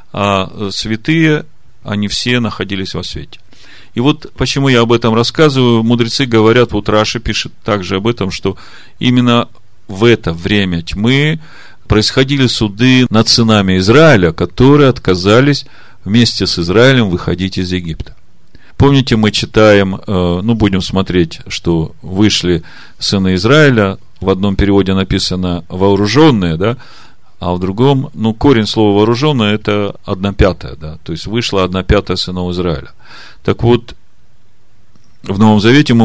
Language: Russian